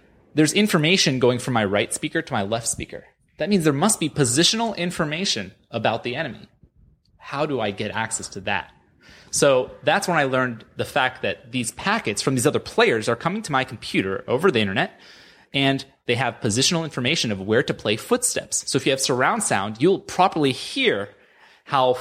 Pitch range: 110-150 Hz